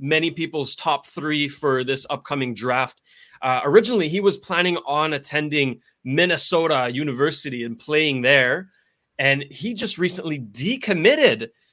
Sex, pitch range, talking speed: male, 130-180 Hz, 130 wpm